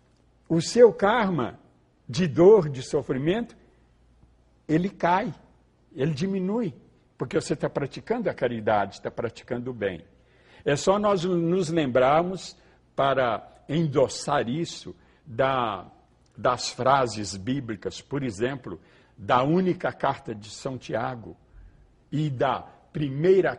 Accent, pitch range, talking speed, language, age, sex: Brazilian, 125-190 Hz, 110 wpm, Portuguese, 60-79, male